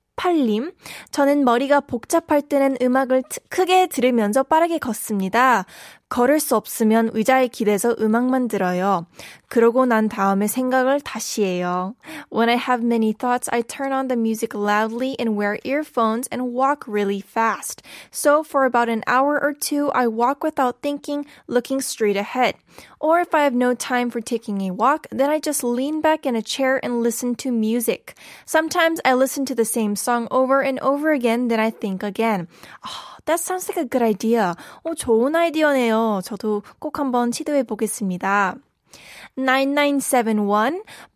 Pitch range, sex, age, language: 225-280 Hz, female, 10-29, Korean